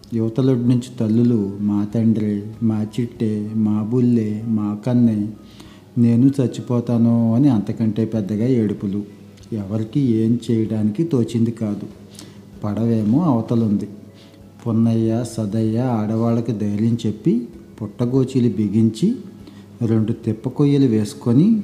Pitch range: 105-120 Hz